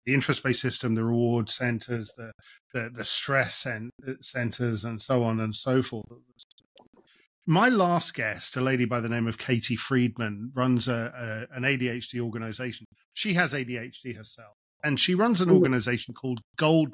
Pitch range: 120-165 Hz